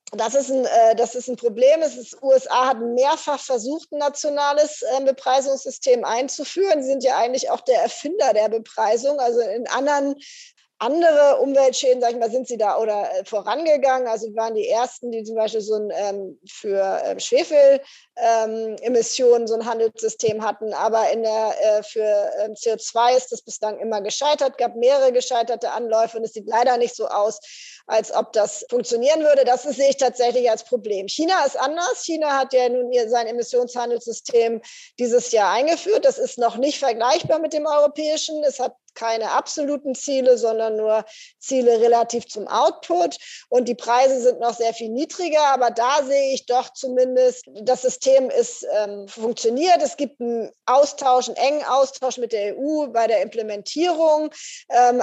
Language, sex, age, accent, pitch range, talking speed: German, female, 20-39, German, 225-280 Hz, 170 wpm